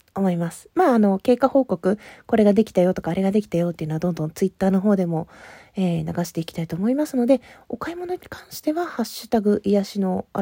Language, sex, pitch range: Japanese, female, 180-240 Hz